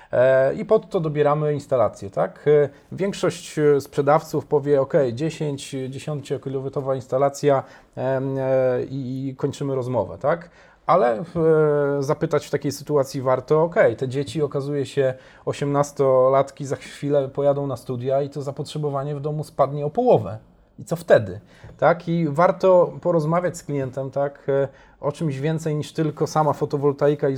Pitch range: 135-150 Hz